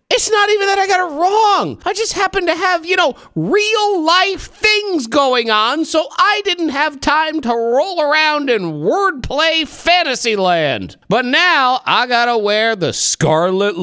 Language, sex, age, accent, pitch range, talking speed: English, male, 40-59, American, 225-370 Hz, 170 wpm